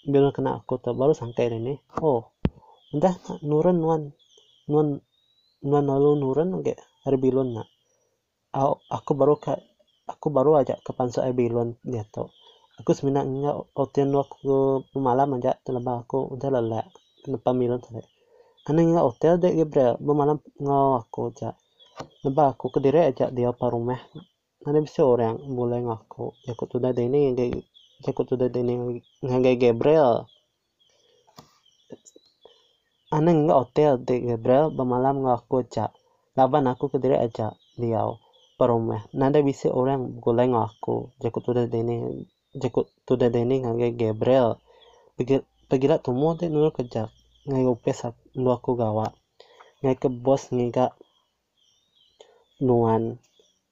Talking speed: 75 wpm